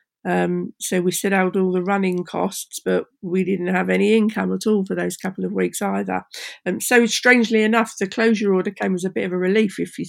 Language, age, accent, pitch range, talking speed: English, 50-69, British, 185-215 Hz, 230 wpm